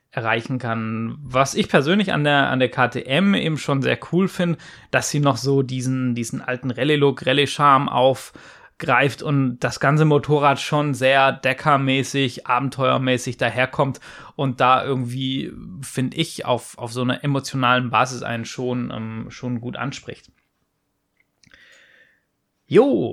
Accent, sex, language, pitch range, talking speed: German, male, German, 125-145 Hz, 140 wpm